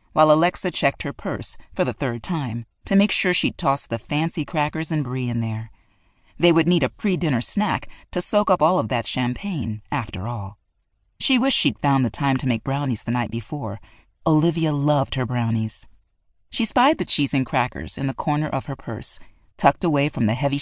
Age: 40-59